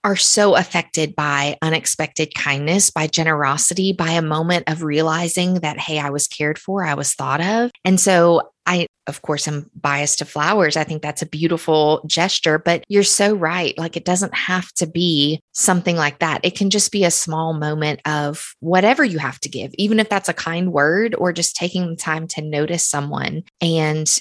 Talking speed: 195 wpm